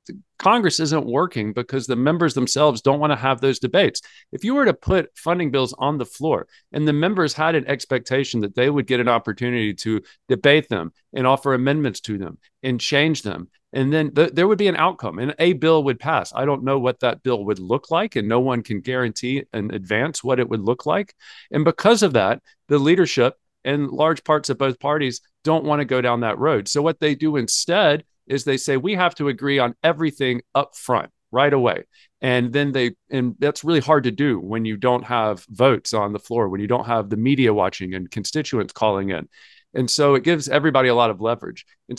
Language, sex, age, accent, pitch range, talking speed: English, male, 50-69, American, 120-155 Hz, 220 wpm